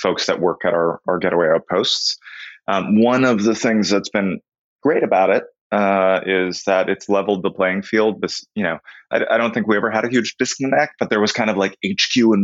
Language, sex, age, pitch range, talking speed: English, male, 20-39, 85-105 Hz, 225 wpm